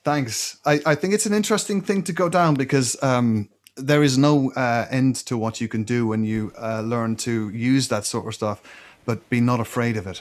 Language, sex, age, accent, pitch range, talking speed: English, male, 30-49, Irish, 110-130 Hz, 230 wpm